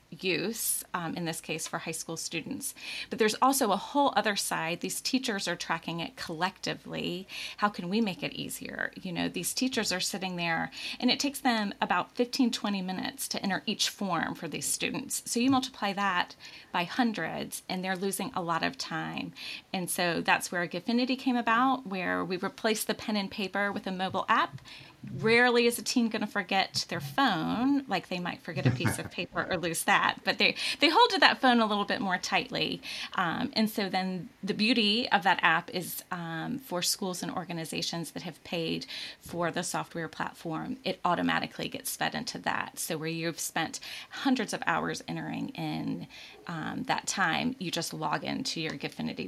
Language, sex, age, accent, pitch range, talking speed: English, female, 30-49, American, 170-245 Hz, 195 wpm